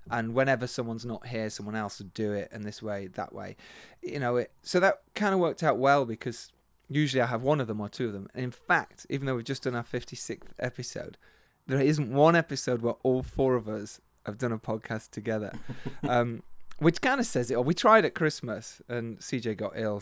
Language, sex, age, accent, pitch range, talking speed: English, male, 30-49, British, 115-155 Hz, 230 wpm